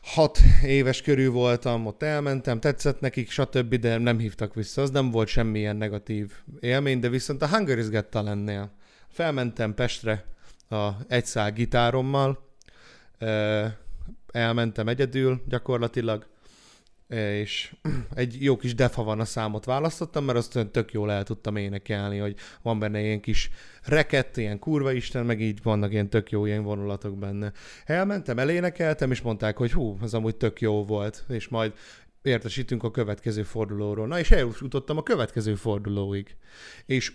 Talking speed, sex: 145 wpm, male